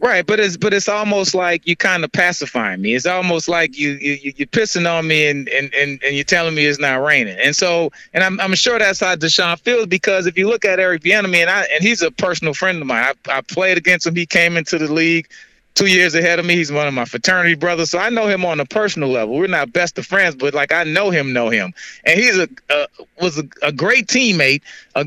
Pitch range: 155-200 Hz